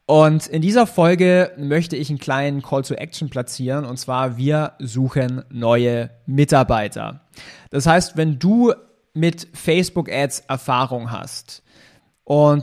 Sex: male